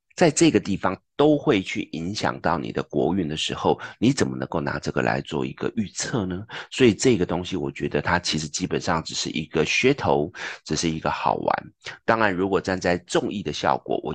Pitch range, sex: 80-105 Hz, male